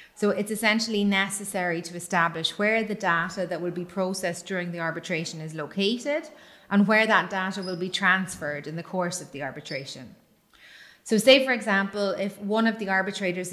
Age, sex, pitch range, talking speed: 30-49, female, 175-205 Hz, 180 wpm